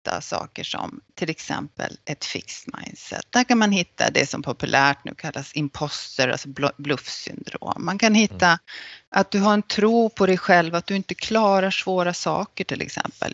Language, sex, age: Swedish, female, 30-49